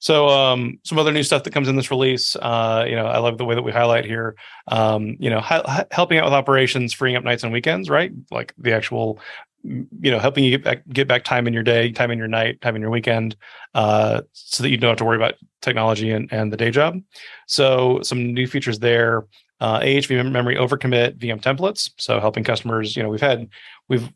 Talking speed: 230 wpm